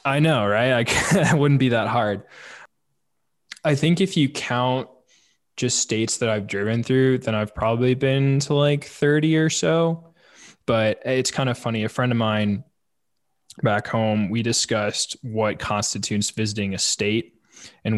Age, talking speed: 20-39, 160 wpm